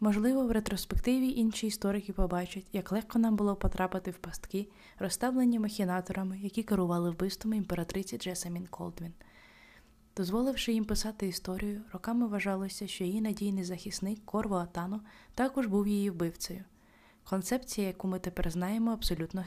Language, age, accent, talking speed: Ukrainian, 20-39, native, 135 wpm